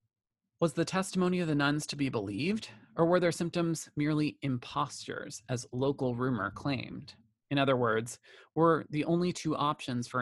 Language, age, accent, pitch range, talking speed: English, 30-49, American, 120-155 Hz, 165 wpm